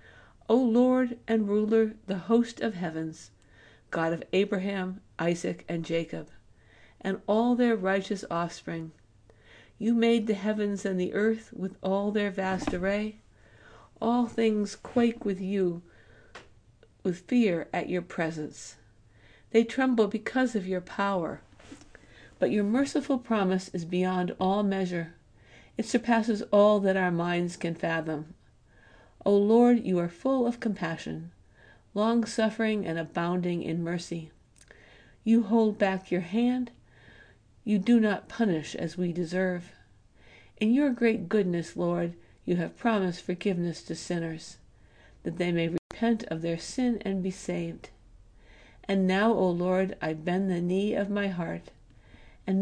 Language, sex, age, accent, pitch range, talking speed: English, female, 60-79, American, 160-215 Hz, 135 wpm